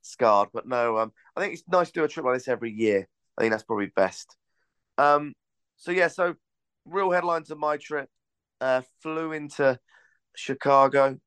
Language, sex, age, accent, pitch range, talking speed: English, male, 20-39, British, 115-135 Hz, 180 wpm